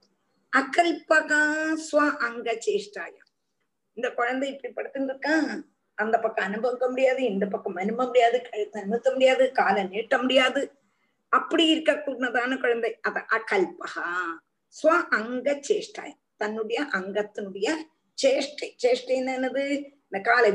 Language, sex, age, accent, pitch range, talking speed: Tamil, female, 20-39, native, 225-315 Hz, 100 wpm